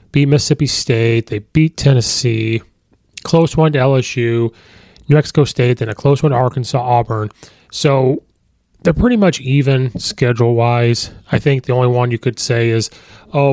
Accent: American